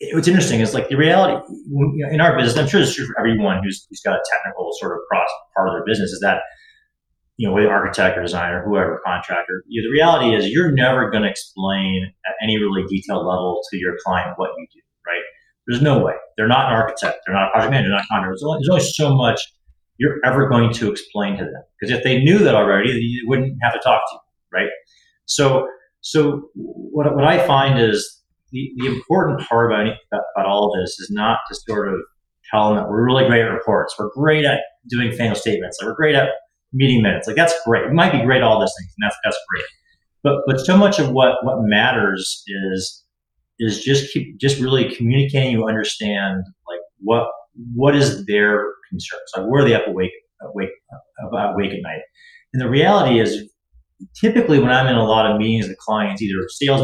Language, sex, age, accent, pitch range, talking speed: English, male, 30-49, American, 105-145 Hz, 225 wpm